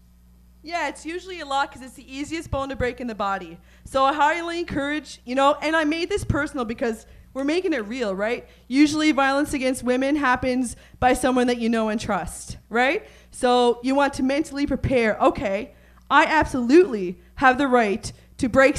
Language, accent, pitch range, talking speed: English, American, 225-275 Hz, 190 wpm